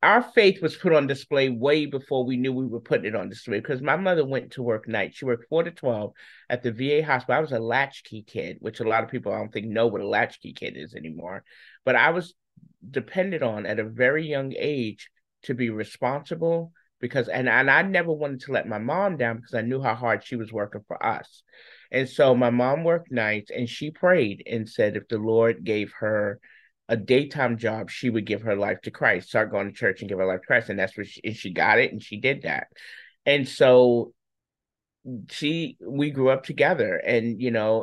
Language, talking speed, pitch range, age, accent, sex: English, 230 wpm, 110-135 Hz, 30-49, American, male